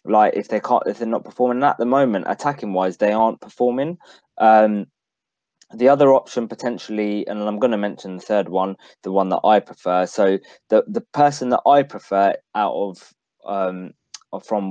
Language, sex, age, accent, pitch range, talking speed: English, male, 20-39, British, 95-115 Hz, 185 wpm